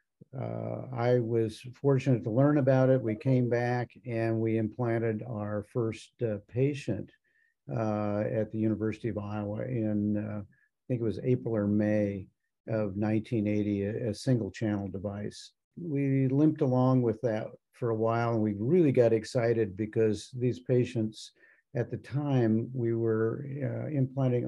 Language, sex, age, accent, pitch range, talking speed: English, male, 50-69, American, 110-130 Hz, 155 wpm